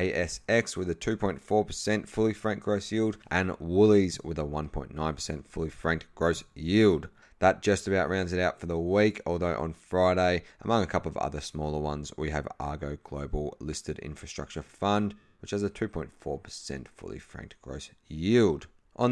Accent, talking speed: Australian, 165 wpm